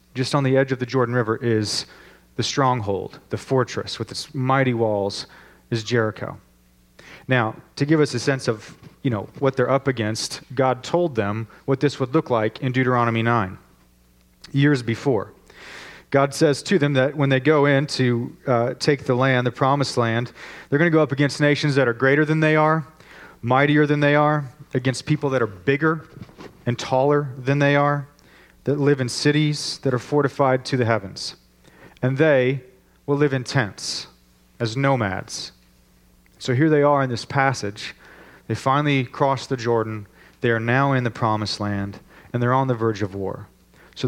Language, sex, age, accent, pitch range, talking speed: English, male, 40-59, American, 110-140 Hz, 180 wpm